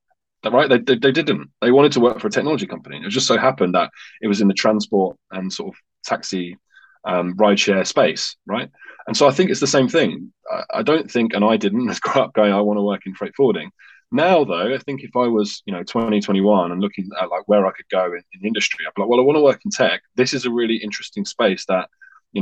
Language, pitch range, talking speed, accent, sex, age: English, 95-120 Hz, 250 wpm, British, male, 20-39